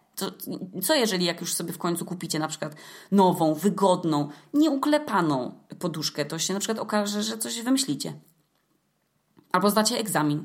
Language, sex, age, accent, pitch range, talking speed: Polish, female, 20-39, native, 155-195 Hz, 150 wpm